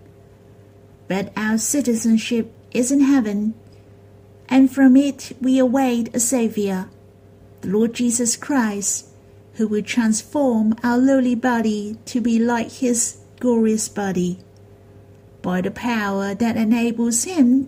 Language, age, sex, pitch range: Chinese, 50-69, female, 200-260 Hz